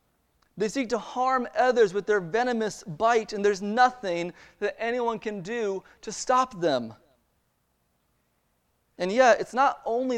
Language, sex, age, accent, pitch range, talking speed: English, male, 30-49, American, 170-230 Hz, 140 wpm